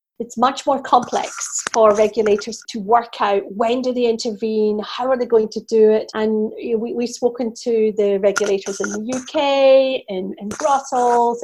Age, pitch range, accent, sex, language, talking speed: 40-59, 215-255 Hz, British, female, English, 175 wpm